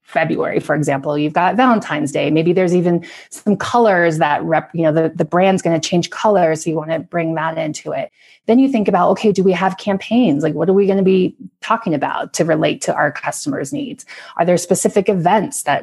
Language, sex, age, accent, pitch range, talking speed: English, female, 30-49, American, 155-200 Hz, 225 wpm